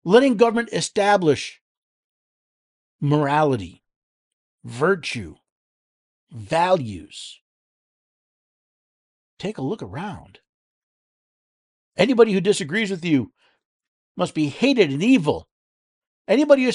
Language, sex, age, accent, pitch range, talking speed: English, male, 50-69, American, 130-215 Hz, 80 wpm